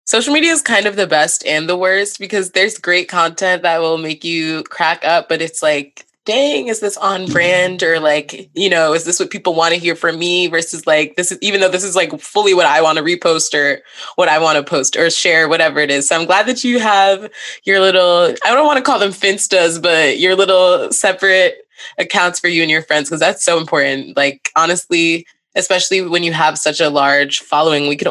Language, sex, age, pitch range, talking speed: English, female, 20-39, 165-200 Hz, 230 wpm